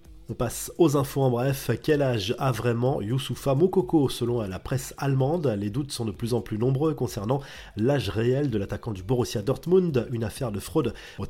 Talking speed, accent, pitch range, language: 195 wpm, French, 115-140 Hz, French